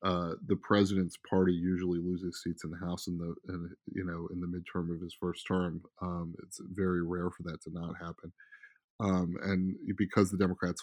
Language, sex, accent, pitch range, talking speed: English, male, American, 90-100 Hz, 200 wpm